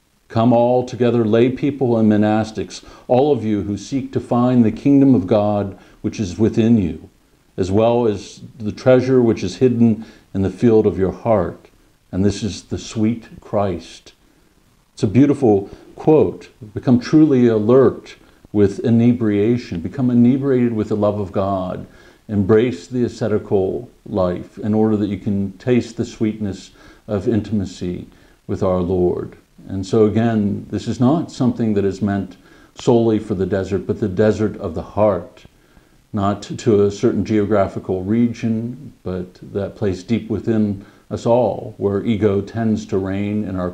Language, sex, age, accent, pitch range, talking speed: English, male, 60-79, American, 100-115 Hz, 160 wpm